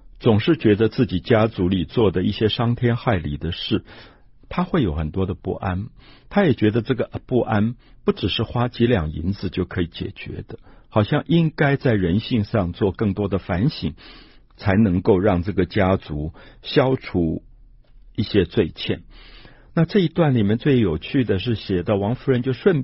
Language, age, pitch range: Chinese, 60-79, 90-125 Hz